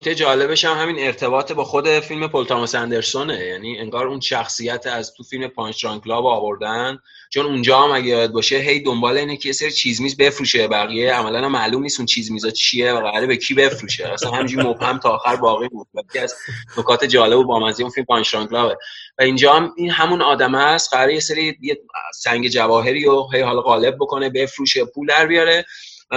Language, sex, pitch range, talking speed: Persian, male, 115-145 Hz, 185 wpm